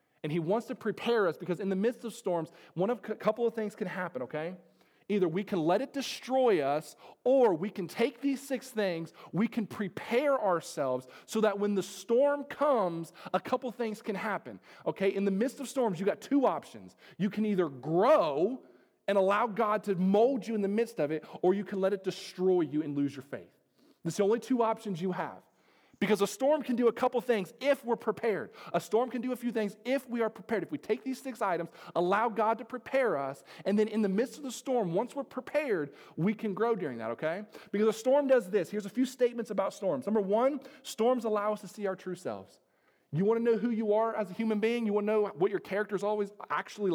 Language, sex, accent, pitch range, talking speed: English, male, American, 190-240 Hz, 235 wpm